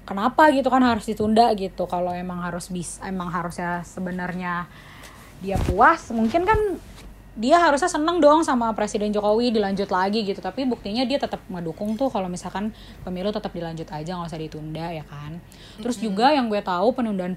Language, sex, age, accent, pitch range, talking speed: Indonesian, female, 20-39, native, 175-220 Hz, 175 wpm